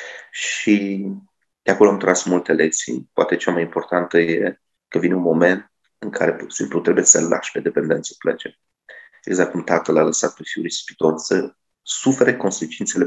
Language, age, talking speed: Romanian, 30-49, 165 wpm